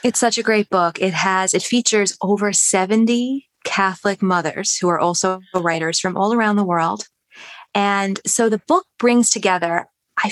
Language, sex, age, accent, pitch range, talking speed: English, female, 20-39, American, 180-230 Hz, 170 wpm